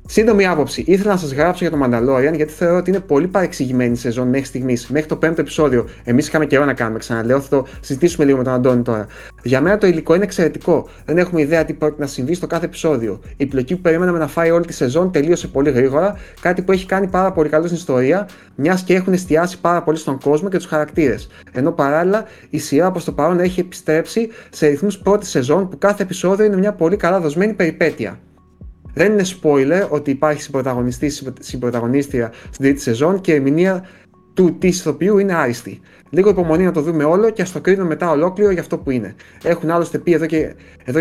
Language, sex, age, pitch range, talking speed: Greek, male, 30-49, 140-180 Hz, 210 wpm